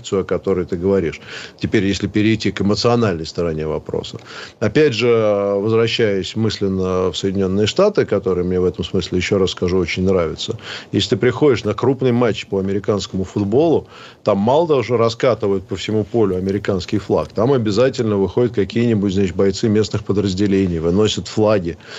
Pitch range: 95-115 Hz